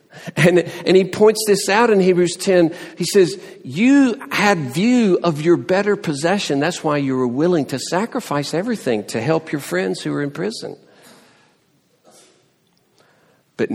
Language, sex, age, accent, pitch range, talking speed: English, male, 50-69, American, 115-165 Hz, 155 wpm